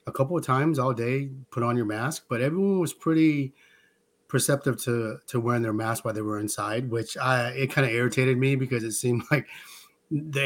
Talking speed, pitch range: 205 wpm, 115-135 Hz